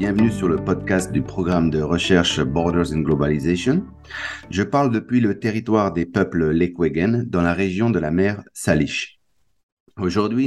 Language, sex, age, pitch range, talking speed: English, male, 50-69, 90-115 Hz, 155 wpm